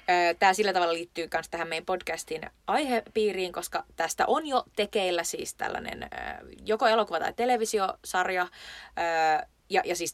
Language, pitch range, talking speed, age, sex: Finnish, 160-225 Hz, 130 wpm, 20-39, female